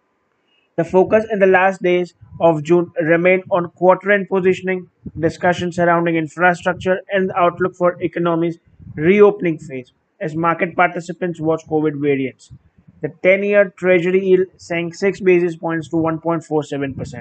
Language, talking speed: English, 125 wpm